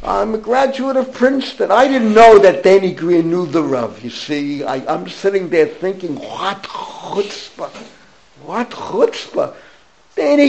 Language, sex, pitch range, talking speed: English, male, 155-230 Hz, 150 wpm